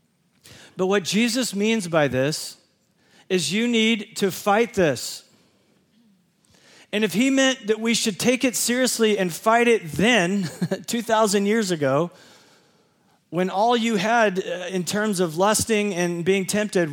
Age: 40-59